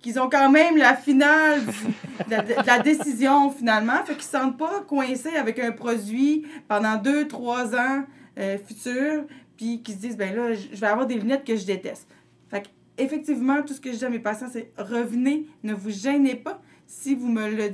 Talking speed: 220 wpm